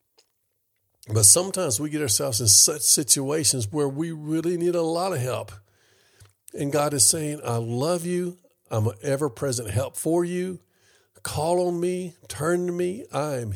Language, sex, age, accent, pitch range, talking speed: English, male, 50-69, American, 100-120 Hz, 160 wpm